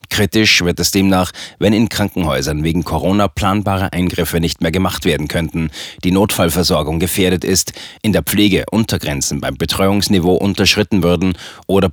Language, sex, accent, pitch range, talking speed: German, male, German, 85-105 Hz, 145 wpm